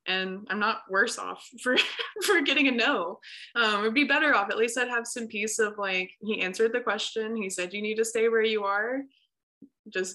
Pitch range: 205-275 Hz